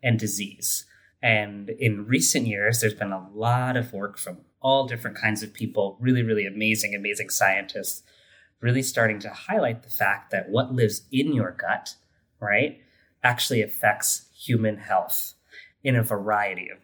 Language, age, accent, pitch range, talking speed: English, 30-49, American, 100-125 Hz, 155 wpm